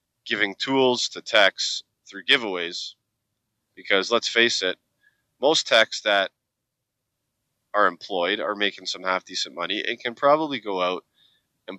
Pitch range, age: 100-125 Hz, 30-49